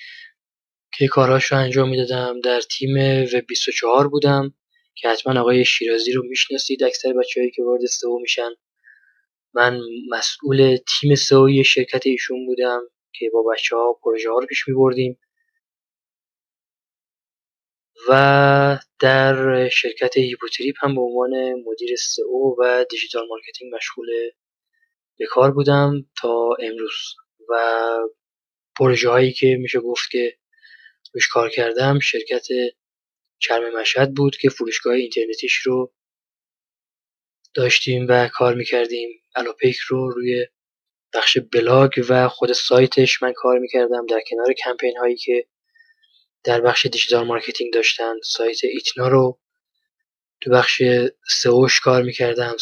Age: 20-39